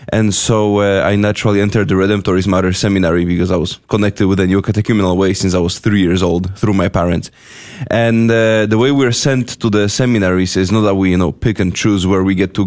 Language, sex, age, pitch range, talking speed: English, male, 20-39, 90-105 Hz, 240 wpm